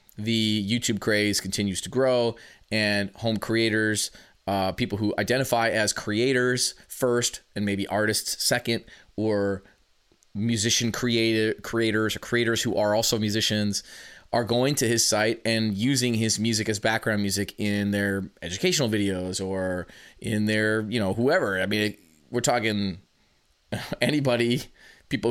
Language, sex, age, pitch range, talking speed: English, male, 20-39, 105-120 Hz, 140 wpm